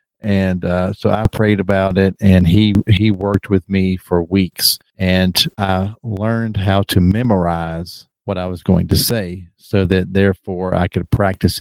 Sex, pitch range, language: male, 90-105 Hz, English